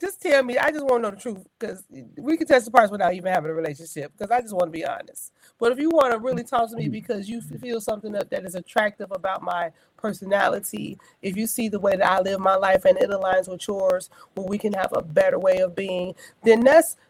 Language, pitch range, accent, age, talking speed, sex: English, 165-210 Hz, American, 30-49, 260 wpm, female